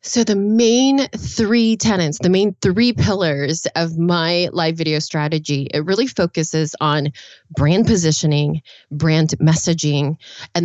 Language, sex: English, female